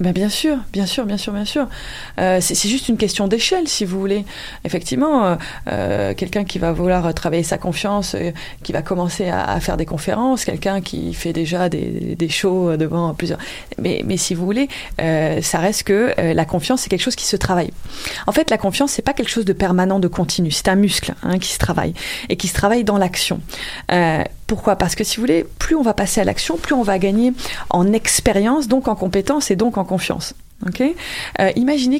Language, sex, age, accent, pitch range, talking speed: French, female, 30-49, French, 180-245 Hz, 220 wpm